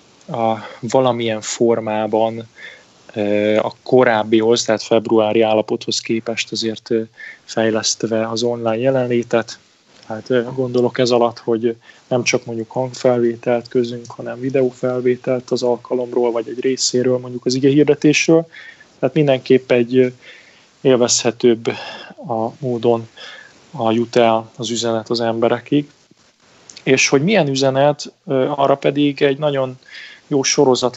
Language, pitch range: Hungarian, 115-130 Hz